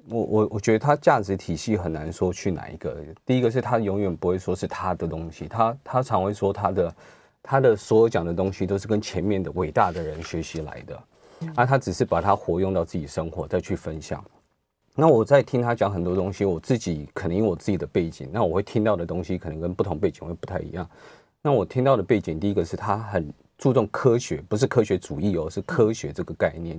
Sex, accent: male, native